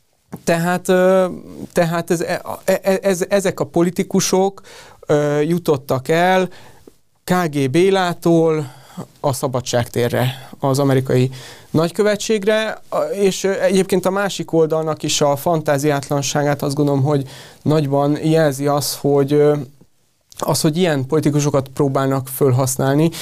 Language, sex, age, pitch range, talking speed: Hungarian, male, 30-49, 135-155 Hz, 95 wpm